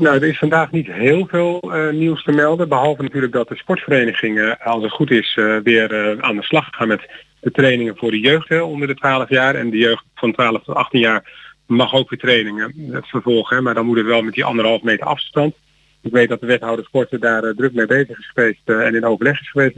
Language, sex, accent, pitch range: Dutch, male, Dutch, 115-135 Hz